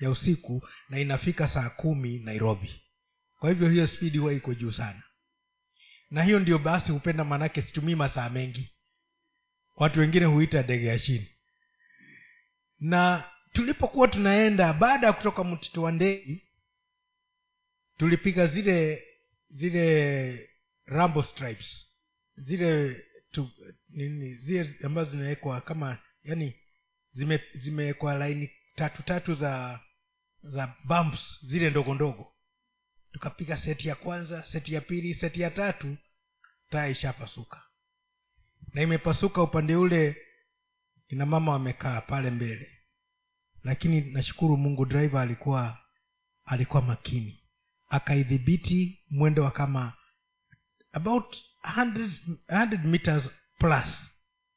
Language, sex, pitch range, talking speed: Swahili, male, 140-200 Hz, 105 wpm